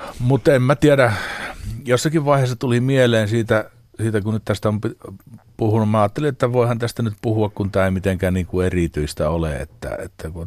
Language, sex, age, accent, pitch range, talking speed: Finnish, male, 50-69, native, 90-110 Hz, 190 wpm